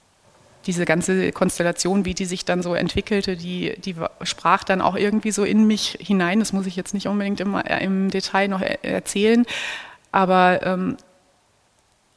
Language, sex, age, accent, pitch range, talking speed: German, female, 30-49, German, 185-215 Hz, 160 wpm